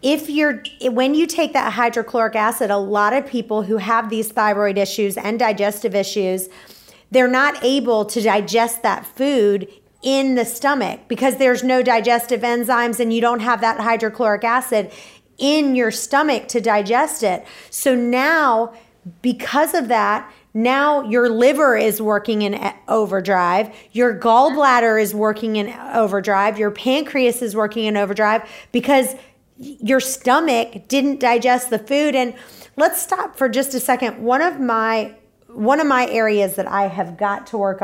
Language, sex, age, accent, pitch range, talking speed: English, female, 30-49, American, 205-255 Hz, 155 wpm